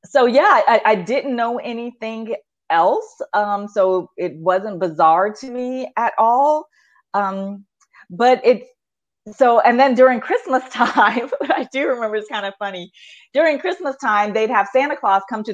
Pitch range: 190-265 Hz